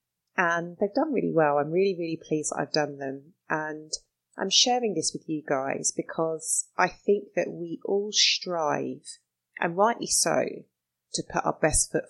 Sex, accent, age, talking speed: female, British, 30-49, 175 wpm